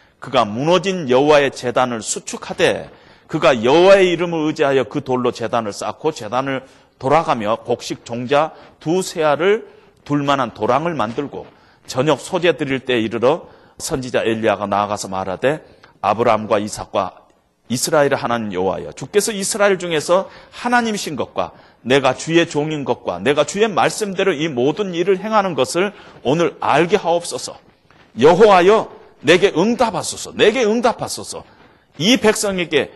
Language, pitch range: Korean, 120-185 Hz